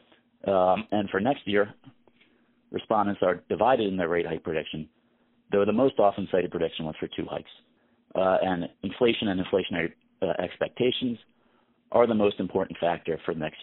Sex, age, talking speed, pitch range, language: male, 40-59, 165 wpm, 90-120 Hz, English